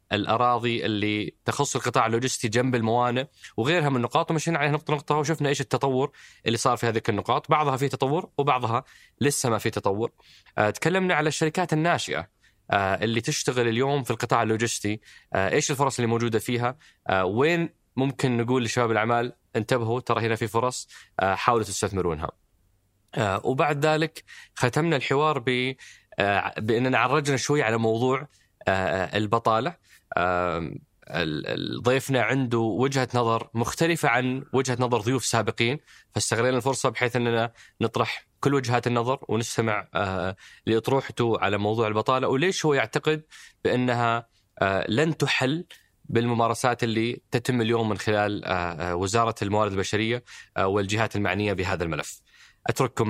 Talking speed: 130 wpm